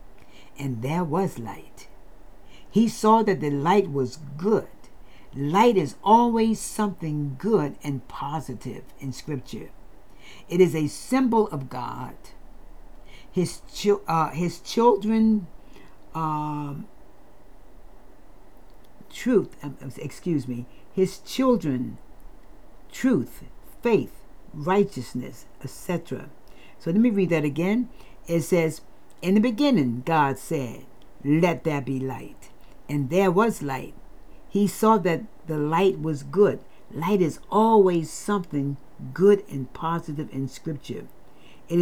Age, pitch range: 60-79, 135-200 Hz